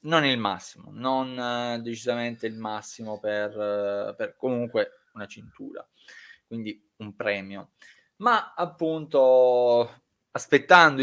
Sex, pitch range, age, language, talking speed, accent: male, 115-150 Hz, 20-39, Italian, 100 wpm, native